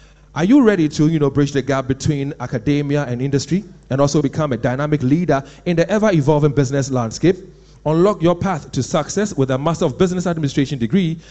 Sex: male